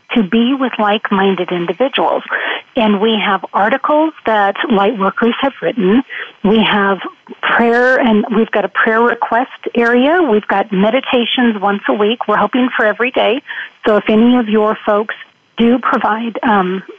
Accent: American